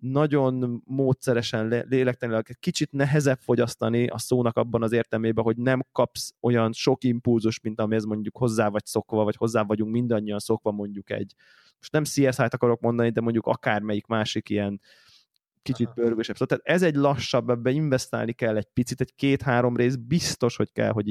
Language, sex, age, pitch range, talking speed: Hungarian, male, 20-39, 110-135 Hz, 170 wpm